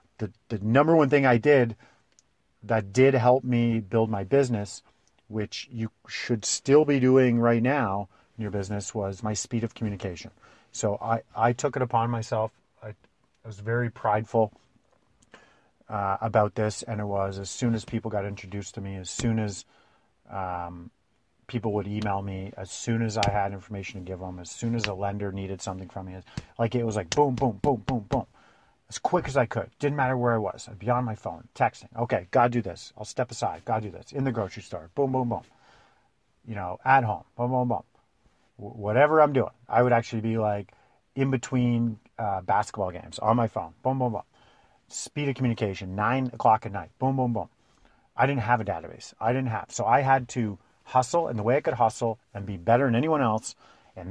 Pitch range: 100-125 Hz